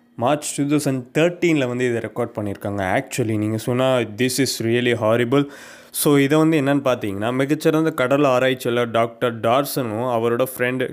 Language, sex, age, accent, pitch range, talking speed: Tamil, male, 20-39, native, 115-140 Hz, 135 wpm